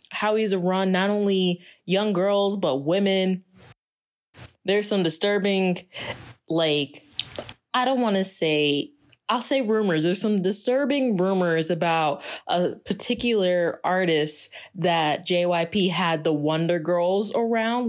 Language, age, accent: English, 20-39, American